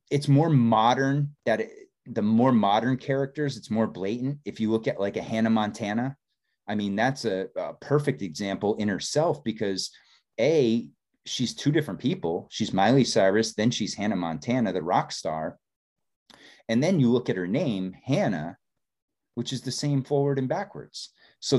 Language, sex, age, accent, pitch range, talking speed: English, male, 30-49, American, 100-135 Hz, 165 wpm